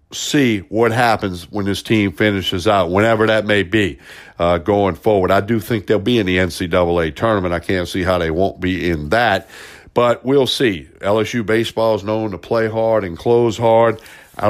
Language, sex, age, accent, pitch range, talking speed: English, male, 60-79, American, 90-115 Hz, 195 wpm